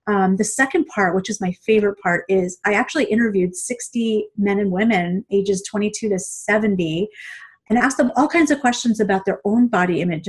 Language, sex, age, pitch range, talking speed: English, female, 30-49, 195-245 Hz, 195 wpm